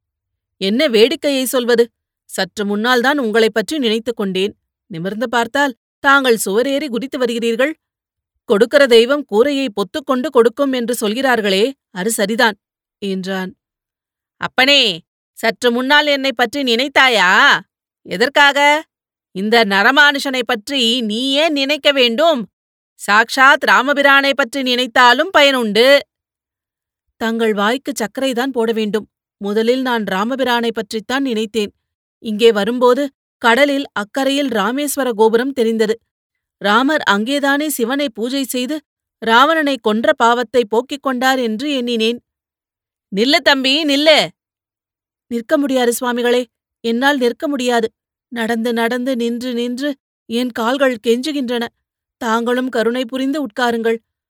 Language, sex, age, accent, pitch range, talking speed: Tamil, female, 30-49, native, 230-275 Hz, 105 wpm